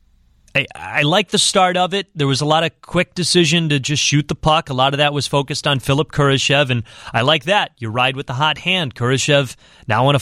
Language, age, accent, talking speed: English, 30-49, American, 245 wpm